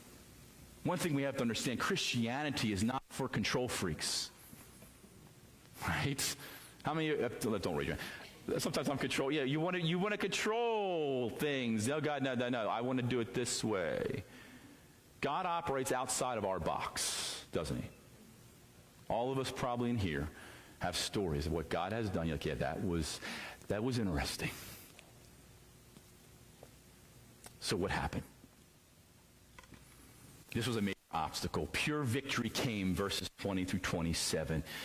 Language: English